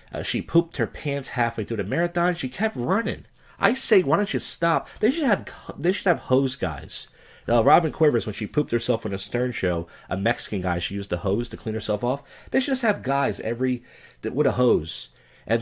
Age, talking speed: 40-59, 230 wpm